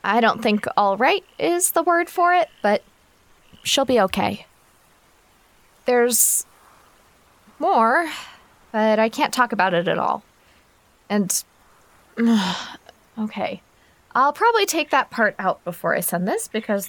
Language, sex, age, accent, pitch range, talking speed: English, female, 20-39, American, 215-300 Hz, 130 wpm